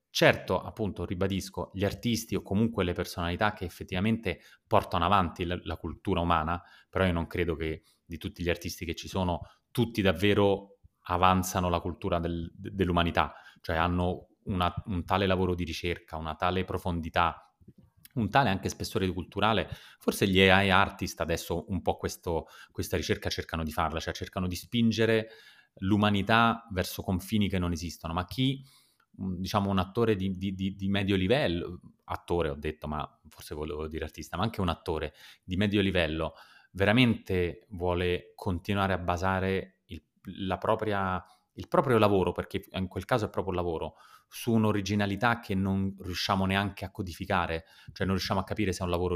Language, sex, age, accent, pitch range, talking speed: Italian, male, 30-49, native, 85-100 Hz, 155 wpm